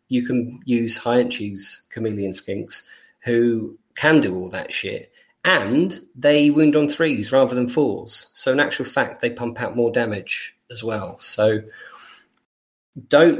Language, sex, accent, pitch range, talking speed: English, male, British, 105-125 Hz, 150 wpm